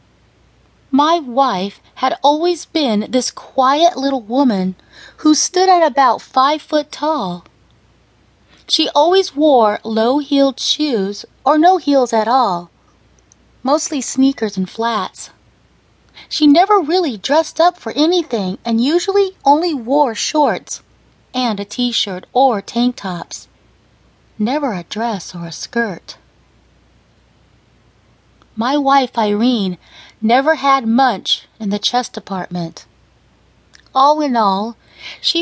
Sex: female